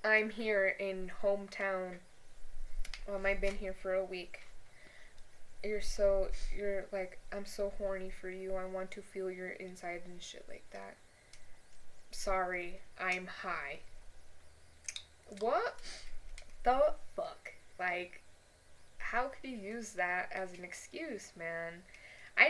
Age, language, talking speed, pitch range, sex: 10-29, English, 125 wpm, 185-215 Hz, female